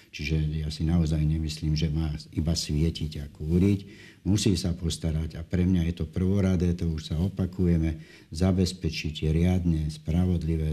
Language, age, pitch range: Slovak, 60-79, 80-90 Hz